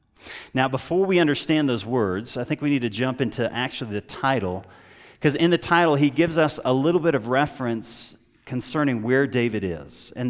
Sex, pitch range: male, 115-145 Hz